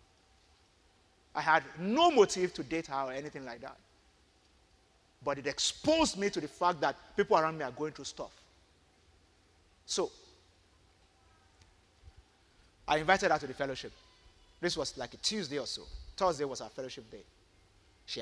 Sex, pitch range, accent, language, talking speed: male, 100-165 Hz, Nigerian, English, 150 wpm